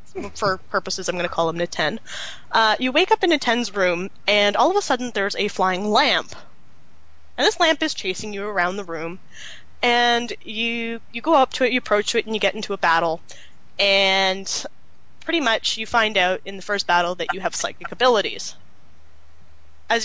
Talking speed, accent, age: 195 wpm, American, 10-29